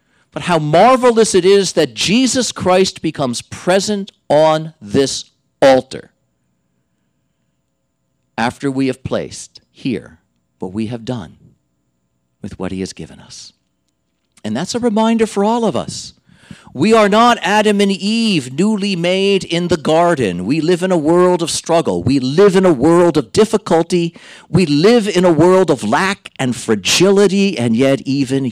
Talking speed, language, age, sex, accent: 155 wpm, English, 50-69, male, American